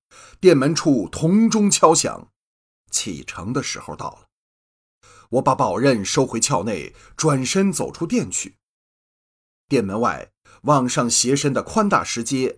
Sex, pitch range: male, 105-145 Hz